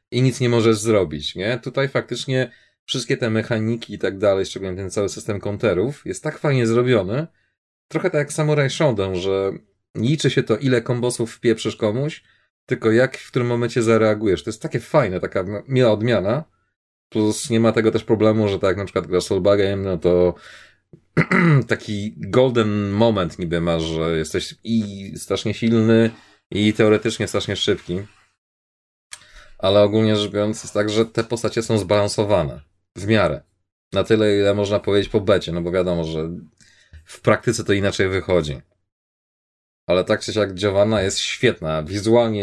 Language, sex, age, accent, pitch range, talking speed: Polish, male, 30-49, native, 95-115 Hz, 160 wpm